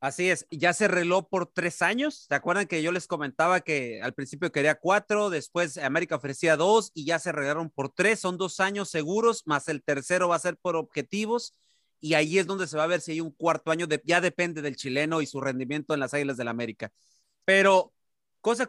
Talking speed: 225 wpm